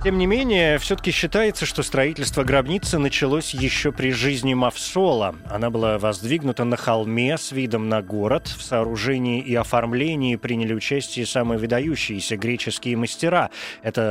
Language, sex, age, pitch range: Russian, male, 20-39, 120-145 Hz